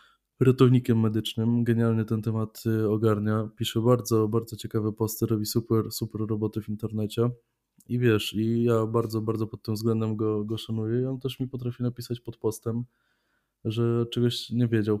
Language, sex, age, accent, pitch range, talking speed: Polish, male, 20-39, native, 110-120 Hz, 165 wpm